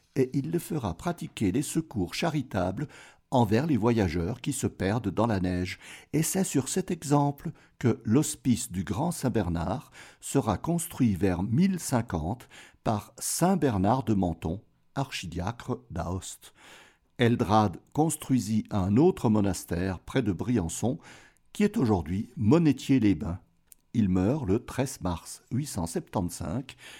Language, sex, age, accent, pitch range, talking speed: French, male, 60-79, French, 95-145 Hz, 120 wpm